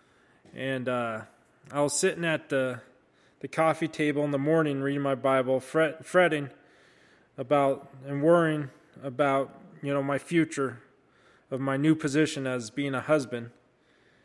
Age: 20-39